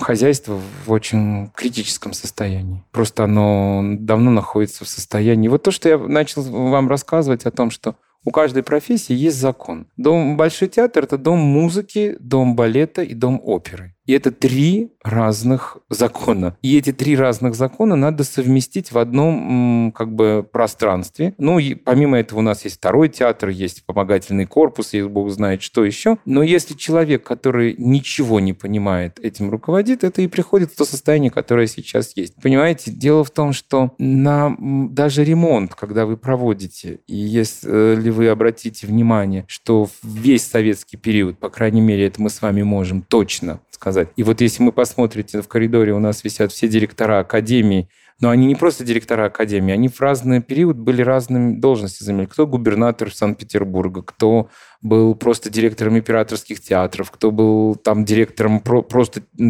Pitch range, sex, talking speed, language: 105-135 Hz, male, 160 wpm, Russian